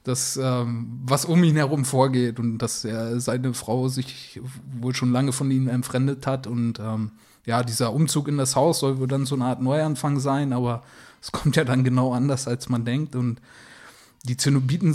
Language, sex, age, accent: German, male, 20-39, German